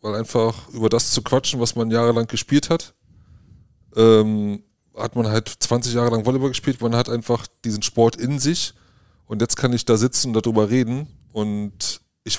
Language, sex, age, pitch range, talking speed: German, male, 30-49, 105-125 Hz, 185 wpm